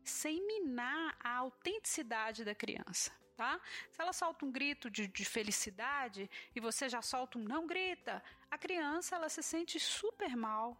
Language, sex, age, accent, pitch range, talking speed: Portuguese, female, 40-59, Brazilian, 230-310 Hz, 160 wpm